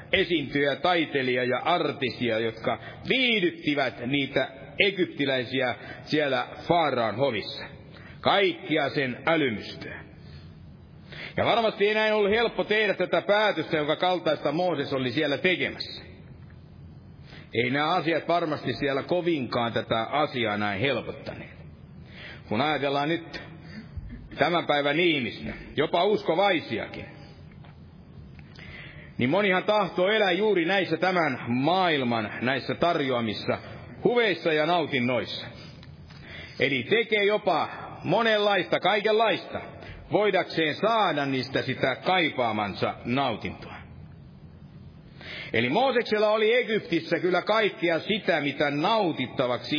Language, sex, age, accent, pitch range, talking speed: Finnish, male, 60-79, native, 135-185 Hz, 95 wpm